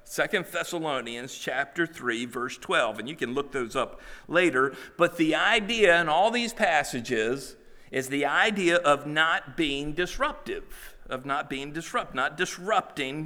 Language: English